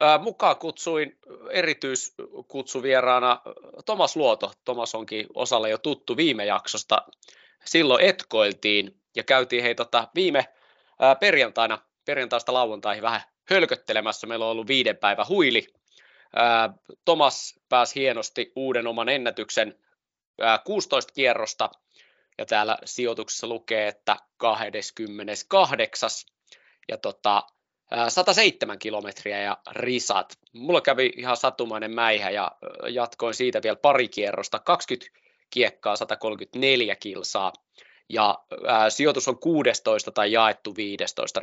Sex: male